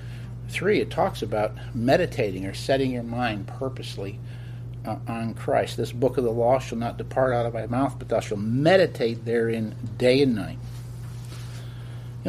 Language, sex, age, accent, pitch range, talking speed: English, male, 50-69, American, 120-140 Hz, 165 wpm